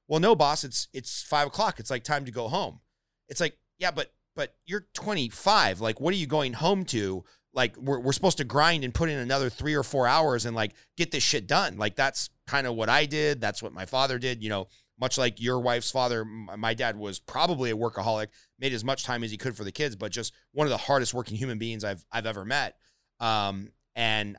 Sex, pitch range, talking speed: male, 115-145 Hz, 240 wpm